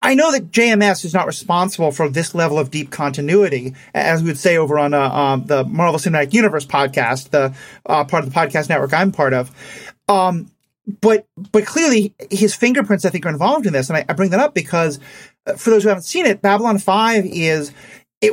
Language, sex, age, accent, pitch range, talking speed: English, male, 30-49, American, 150-205 Hz, 210 wpm